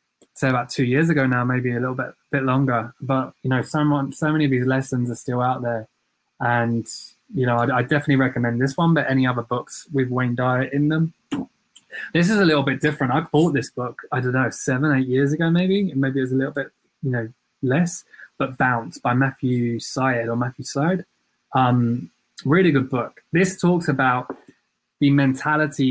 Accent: British